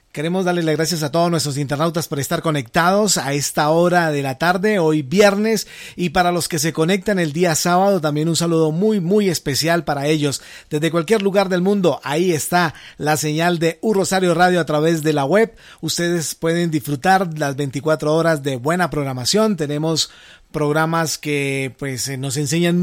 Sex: male